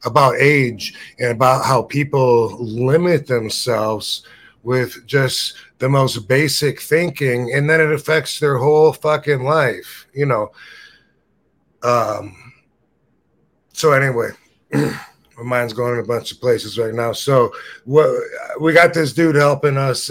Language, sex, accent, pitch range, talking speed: English, male, American, 125-165 Hz, 135 wpm